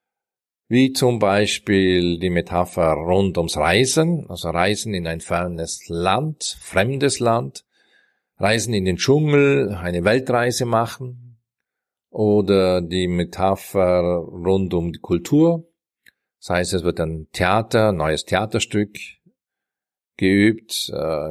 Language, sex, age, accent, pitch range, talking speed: German, male, 50-69, German, 90-125 Hz, 115 wpm